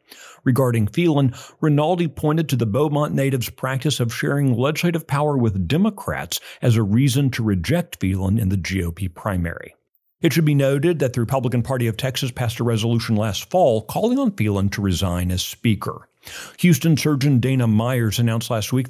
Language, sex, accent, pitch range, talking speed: English, male, American, 105-140 Hz, 170 wpm